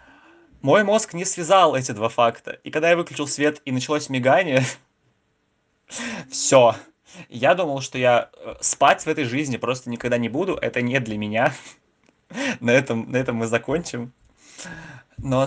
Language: Russian